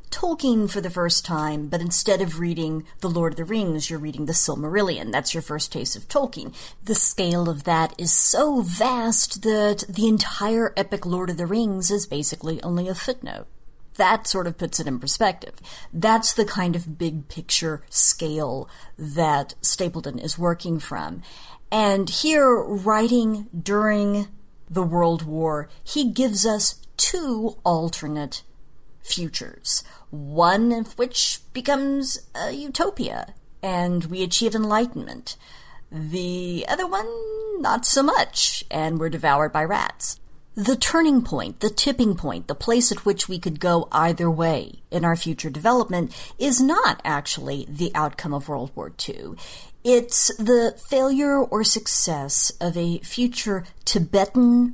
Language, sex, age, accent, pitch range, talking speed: English, female, 40-59, American, 165-225 Hz, 145 wpm